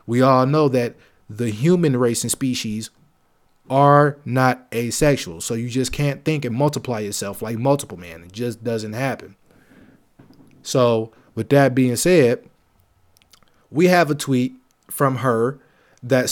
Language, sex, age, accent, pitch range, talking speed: English, male, 20-39, American, 120-150 Hz, 145 wpm